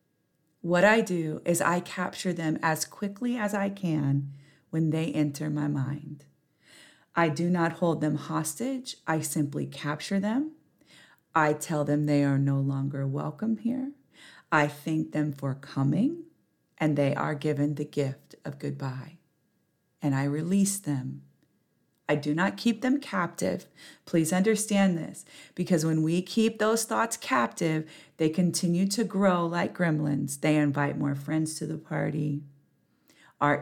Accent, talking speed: American, 150 wpm